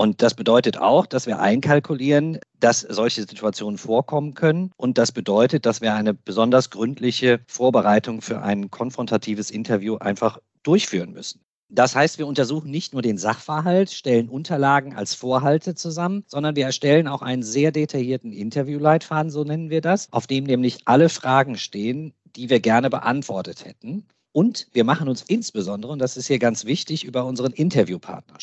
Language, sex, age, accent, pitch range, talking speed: German, male, 50-69, German, 115-155 Hz, 165 wpm